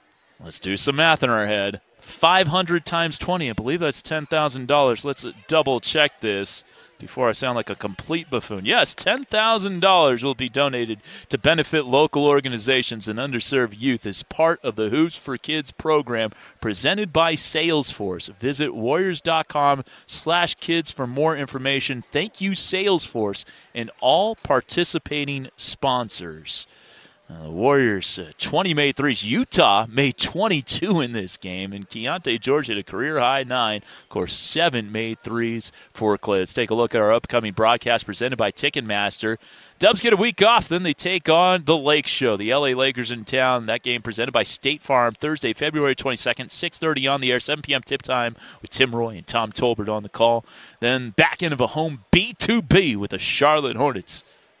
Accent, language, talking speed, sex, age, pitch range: American, English, 165 wpm, male, 30-49, 115-160 Hz